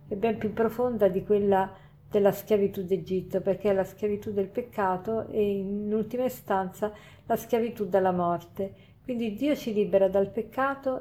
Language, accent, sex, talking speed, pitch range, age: Italian, native, female, 160 wpm, 195-225 Hz, 50-69